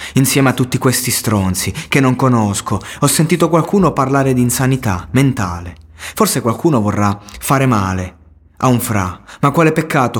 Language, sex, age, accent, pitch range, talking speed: Italian, male, 20-39, native, 100-140 Hz, 155 wpm